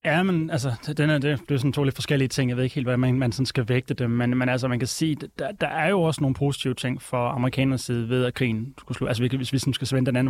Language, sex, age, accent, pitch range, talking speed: Danish, male, 20-39, native, 120-140 Hz, 305 wpm